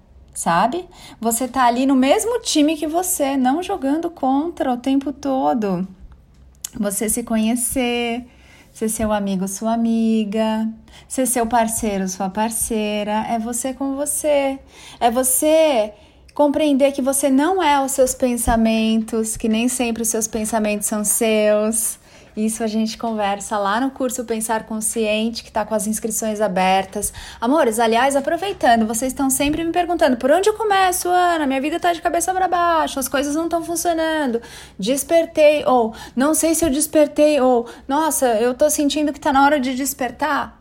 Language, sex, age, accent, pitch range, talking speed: Portuguese, female, 30-49, Brazilian, 225-290 Hz, 160 wpm